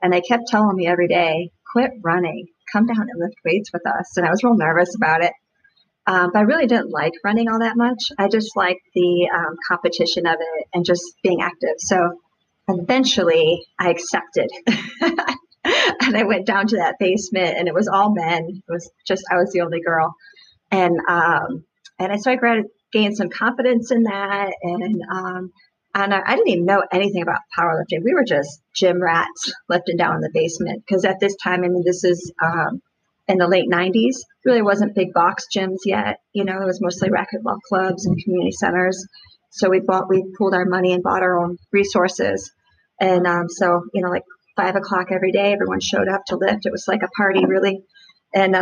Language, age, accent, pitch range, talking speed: English, 40-59, American, 180-215 Hz, 200 wpm